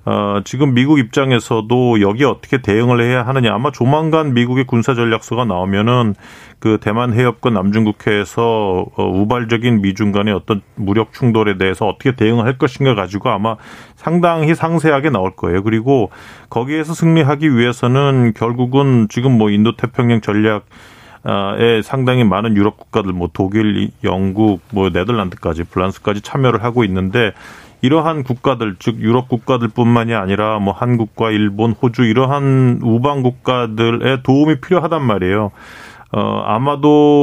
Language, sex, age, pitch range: Korean, male, 40-59, 105-130 Hz